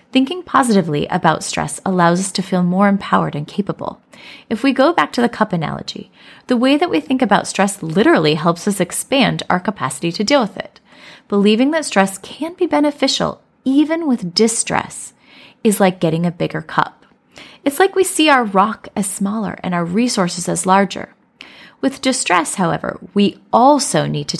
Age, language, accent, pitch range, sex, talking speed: 30-49, English, American, 175-255 Hz, female, 175 wpm